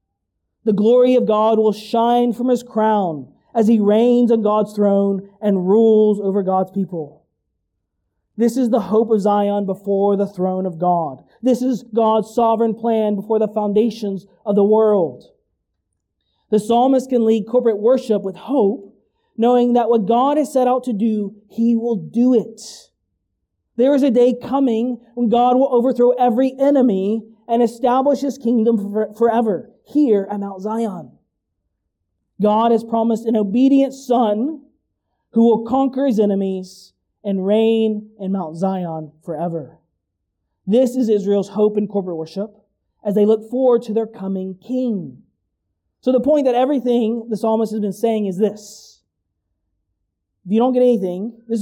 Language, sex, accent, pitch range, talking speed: English, male, American, 195-240 Hz, 155 wpm